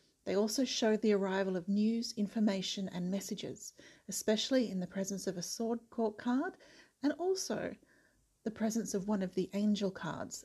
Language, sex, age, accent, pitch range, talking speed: English, female, 40-59, Australian, 195-235 Hz, 165 wpm